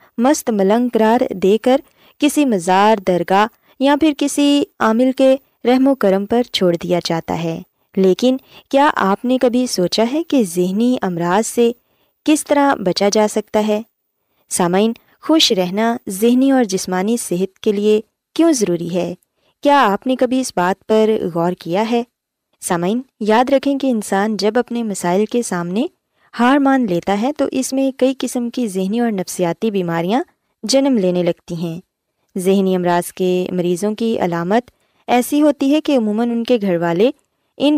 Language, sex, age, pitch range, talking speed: Urdu, female, 20-39, 185-255 Hz, 165 wpm